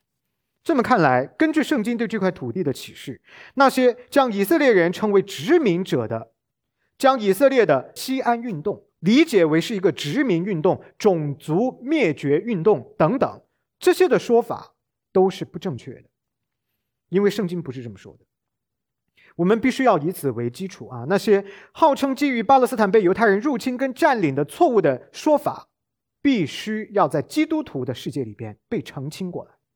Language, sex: English, male